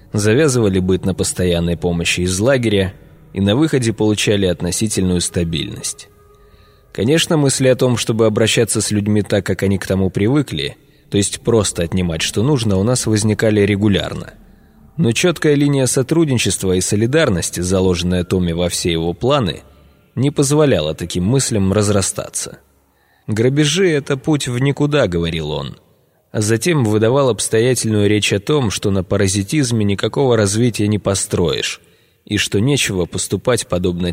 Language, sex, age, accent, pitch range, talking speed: Russian, male, 20-39, native, 95-130 Hz, 145 wpm